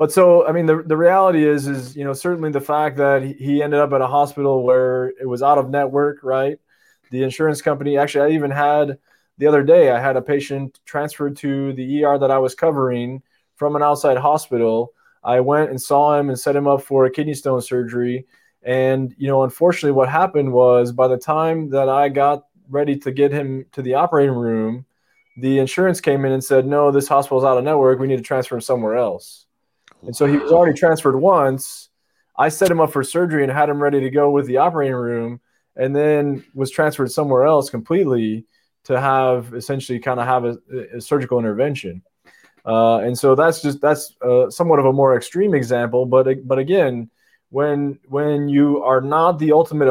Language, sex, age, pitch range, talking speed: English, male, 20-39, 130-145 Hz, 205 wpm